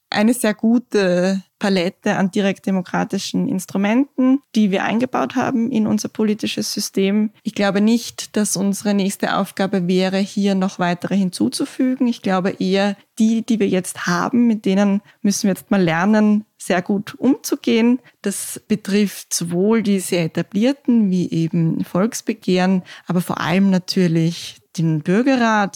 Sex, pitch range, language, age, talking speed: female, 180-220 Hz, German, 20-39, 140 wpm